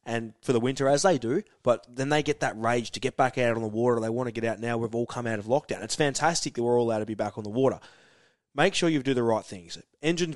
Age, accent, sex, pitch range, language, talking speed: 20-39, Australian, male, 115-140 Hz, English, 300 wpm